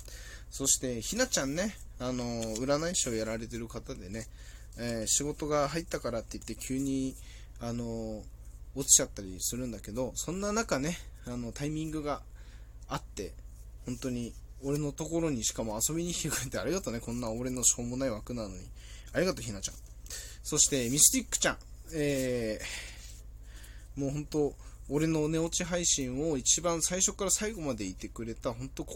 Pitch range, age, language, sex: 105-155 Hz, 20-39, Japanese, male